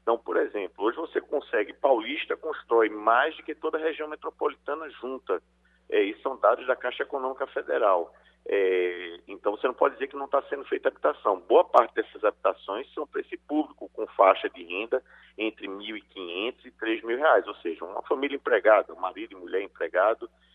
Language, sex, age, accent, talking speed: Portuguese, male, 50-69, Brazilian, 185 wpm